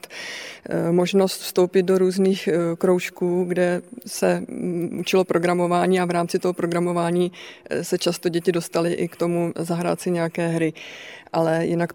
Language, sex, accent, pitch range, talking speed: Czech, female, native, 170-180 Hz, 135 wpm